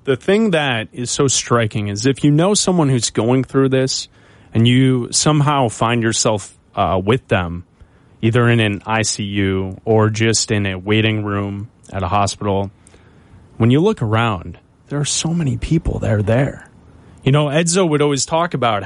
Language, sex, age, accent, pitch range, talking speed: English, male, 20-39, American, 110-145 Hz, 175 wpm